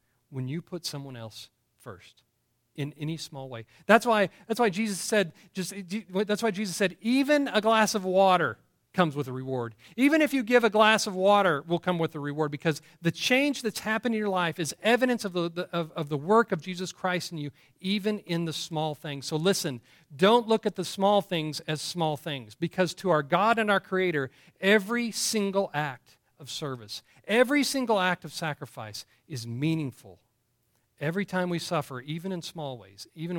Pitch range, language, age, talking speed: 145-195 Hz, English, 40-59, 195 wpm